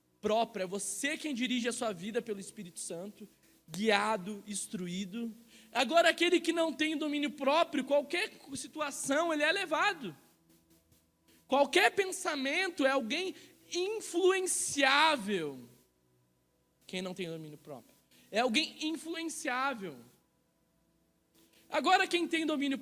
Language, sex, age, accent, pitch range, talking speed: Portuguese, male, 20-39, Brazilian, 225-320 Hz, 110 wpm